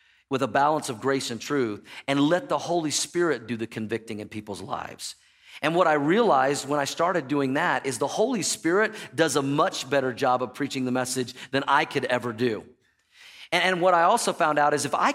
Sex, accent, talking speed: male, American, 220 wpm